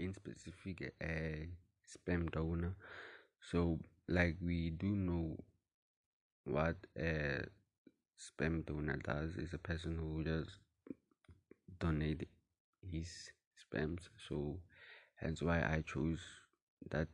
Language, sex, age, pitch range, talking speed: English, male, 30-49, 80-90 Hz, 105 wpm